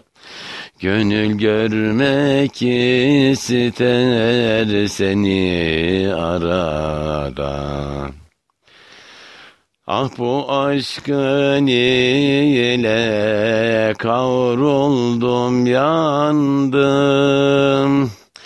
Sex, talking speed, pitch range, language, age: male, 35 wpm, 105-140 Hz, Turkish, 60-79